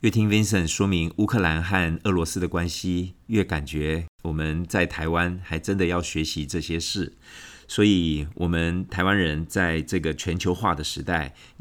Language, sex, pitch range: Chinese, male, 80-100 Hz